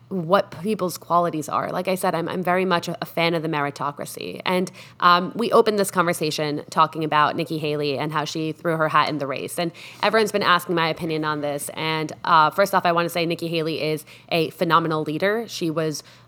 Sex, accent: female, American